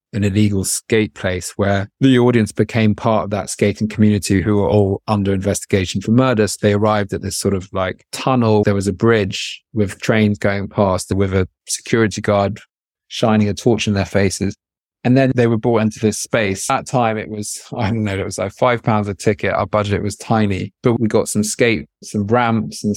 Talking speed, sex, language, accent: 215 wpm, male, English, British